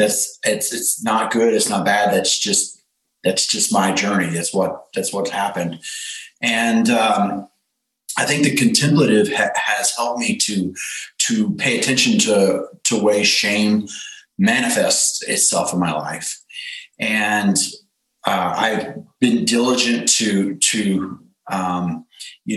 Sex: male